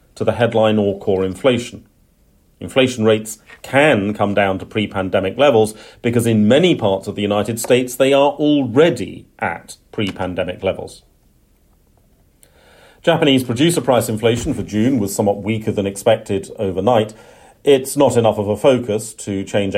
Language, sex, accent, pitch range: English, male, British, 95-120 Hz